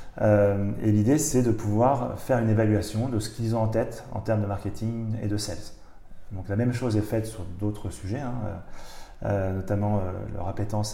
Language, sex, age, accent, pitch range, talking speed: French, male, 30-49, French, 100-120 Hz, 205 wpm